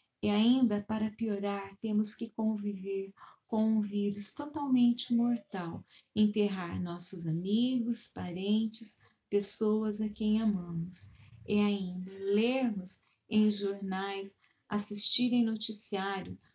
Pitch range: 200-220 Hz